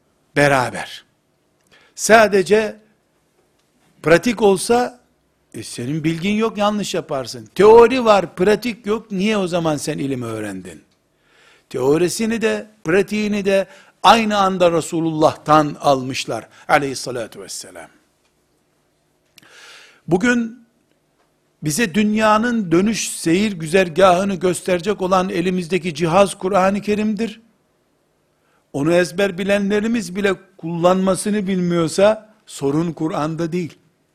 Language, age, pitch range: Turkish, 60-79, 150-210 Hz